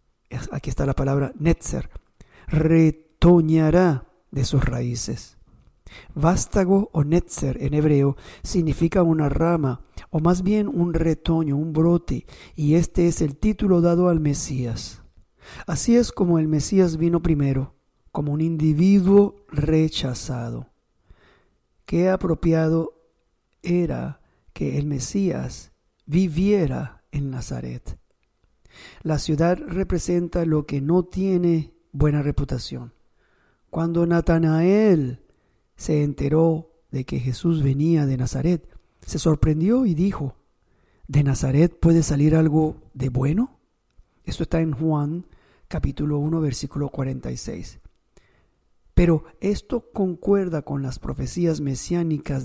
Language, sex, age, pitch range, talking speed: English, male, 50-69, 140-170 Hz, 110 wpm